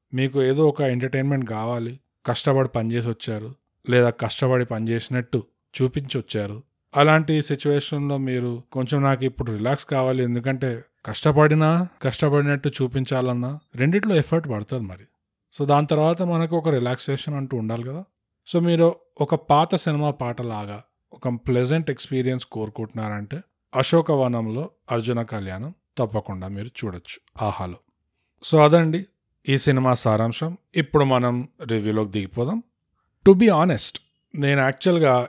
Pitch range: 120-150 Hz